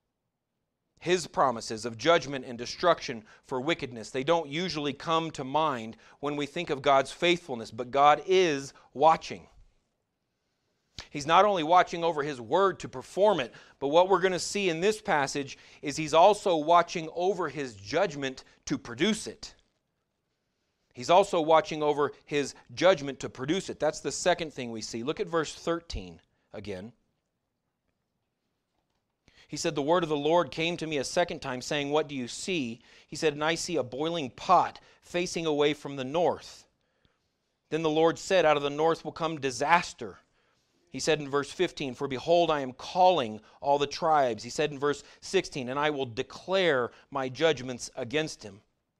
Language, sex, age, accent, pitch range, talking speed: English, male, 40-59, American, 135-170 Hz, 175 wpm